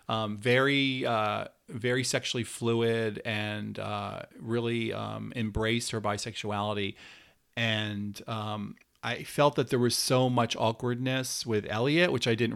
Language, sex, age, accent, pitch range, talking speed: English, male, 40-59, American, 110-130 Hz, 135 wpm